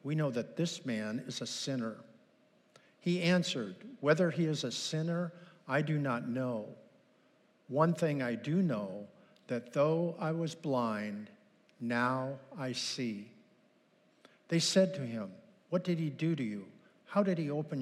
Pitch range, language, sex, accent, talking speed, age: 130-185 Hz, English, male, American, 155 wpm, 50-69